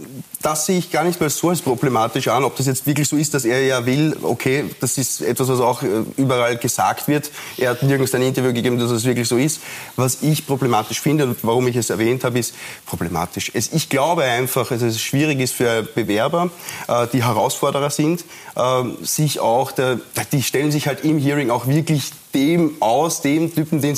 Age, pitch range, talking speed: 30-49, 125-145 Hz, 200 wpm